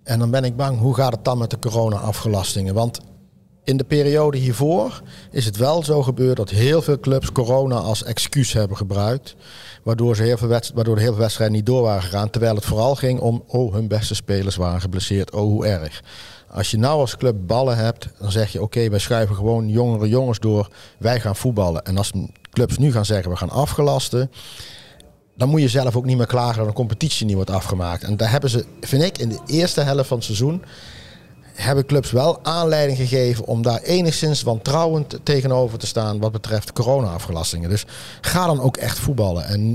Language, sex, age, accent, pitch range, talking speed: Dutch, male, 50-69, Dutch, 105-130 Hz, 200 wpm